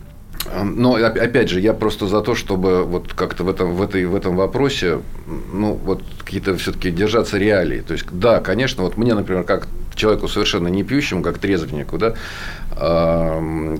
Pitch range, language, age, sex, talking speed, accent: 85-105 Hz, Russian, 40-59, male, 170 wpm, native